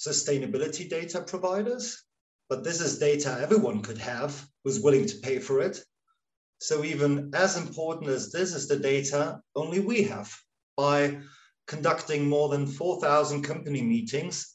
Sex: male